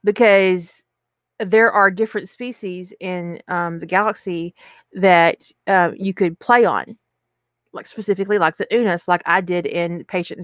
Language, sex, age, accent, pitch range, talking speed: English, female, 40-59, American, 175-210 Hz, 145 wpm